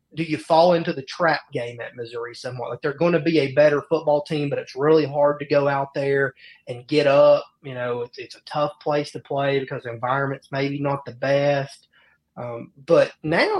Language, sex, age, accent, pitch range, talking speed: English, male, 30-49, American, 140-165 Hz, 215 wpm